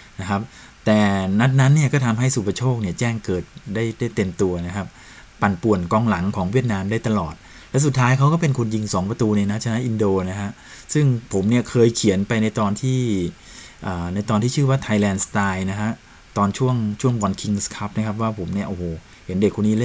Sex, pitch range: male, 100-120 Hz